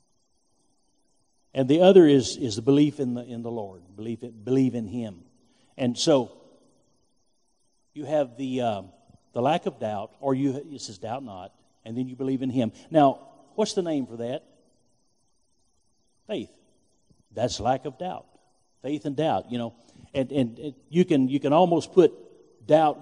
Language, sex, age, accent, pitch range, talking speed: English, male, 50-69, American, 115-150 Hz, 170 wpm